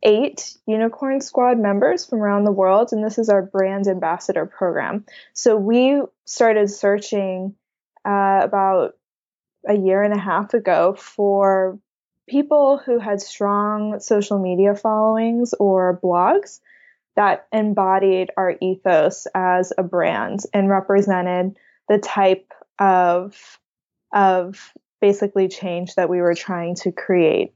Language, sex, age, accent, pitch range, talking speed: English, female, 10-29, American, 190-210 Hz, 125 wpm